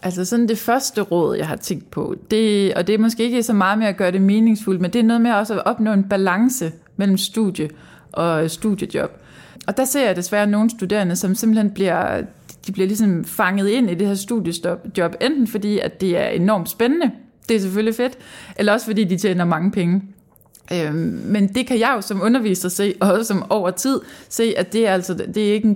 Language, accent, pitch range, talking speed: Danish, native, 185-220 Hz, 220 wpm